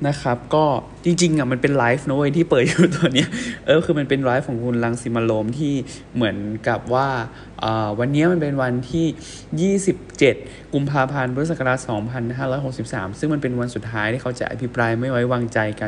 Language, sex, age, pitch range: Thai, male, 20-39, 115-145 Hz